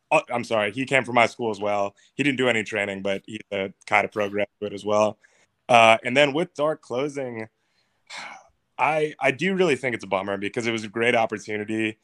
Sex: male